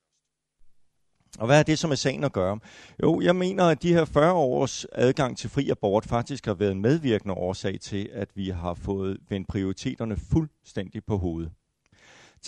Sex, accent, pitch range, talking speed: male, native, 100-150 Hz, 180 wpm